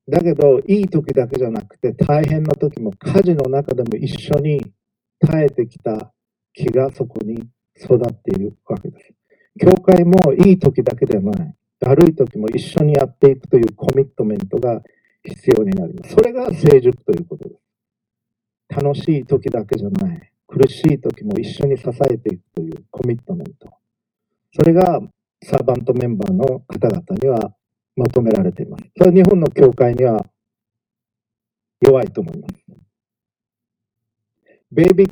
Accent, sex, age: native, male, 50-69